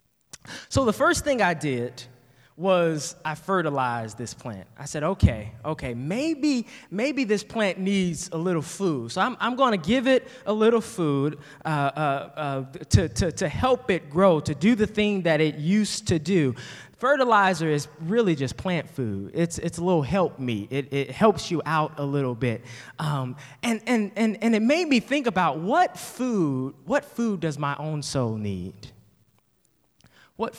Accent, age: American, 20-39